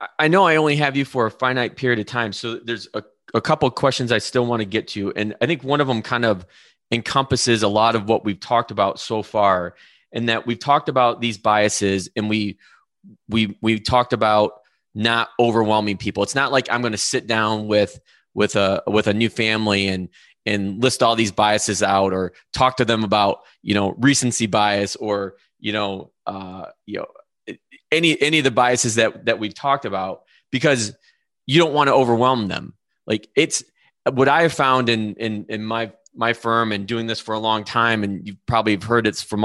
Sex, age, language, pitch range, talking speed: male, 20-39, English, 105-125 Hz, 210 wpm